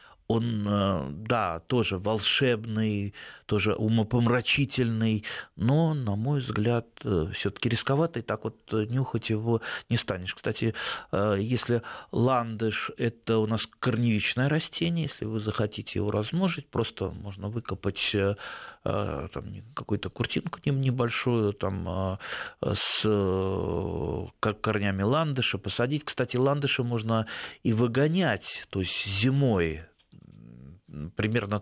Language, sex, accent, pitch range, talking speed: Russian, male, native, 95-120 Hz, 100 wpm